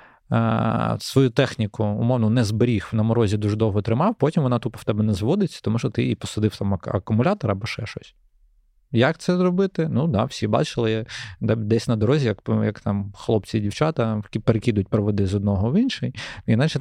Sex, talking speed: male, 180 wpm